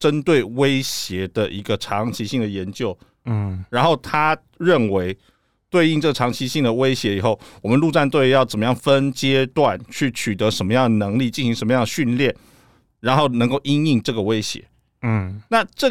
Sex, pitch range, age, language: male, 115-150 Hz, 50-69, Chinese